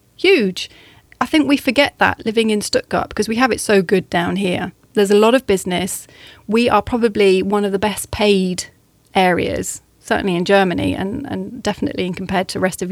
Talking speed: 190 wpm